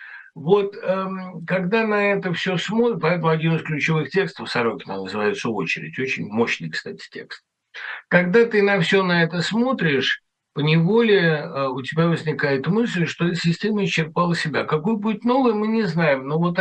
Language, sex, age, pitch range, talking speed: Russian, male, 60-79, 150-225 Hz, 155 wpm